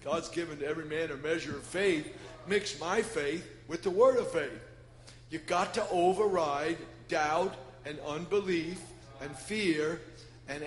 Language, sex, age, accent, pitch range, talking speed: English, male, 50-69, American, 150-185 Hz, 150 wpm